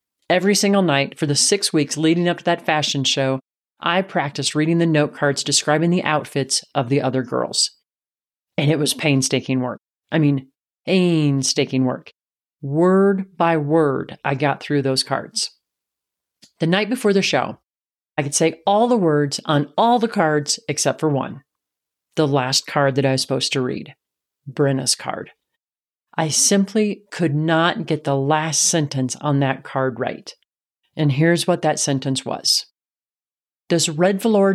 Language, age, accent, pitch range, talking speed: English, 40-59, American, 140-185 Hz, 160 wpm